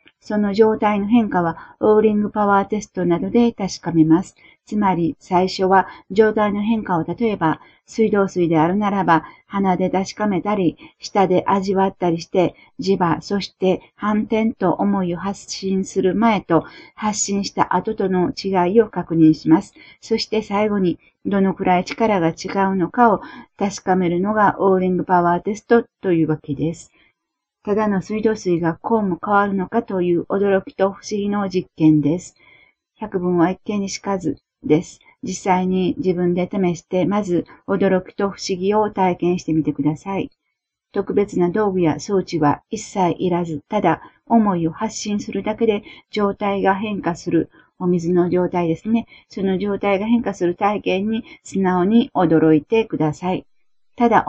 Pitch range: 175-210 Hz